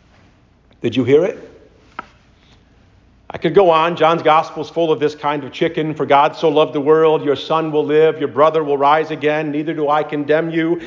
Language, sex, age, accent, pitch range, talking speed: English, male, 50-69, American, 105-155 Hz, 205 wpm